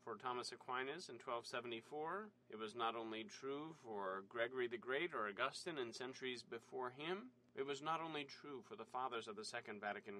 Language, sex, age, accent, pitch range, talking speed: English, male, 30-49, American, 115-135 Hz, 190 wpm